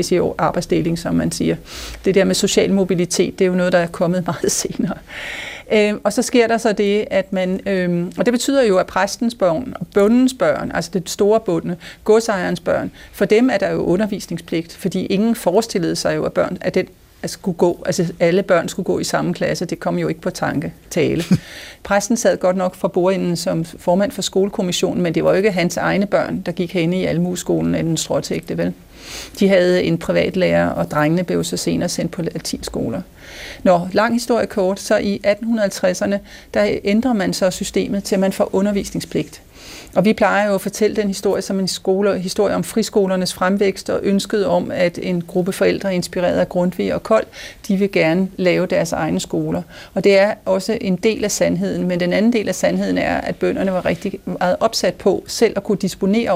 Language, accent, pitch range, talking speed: Danish, native, 180-205 Hz, 210 wpm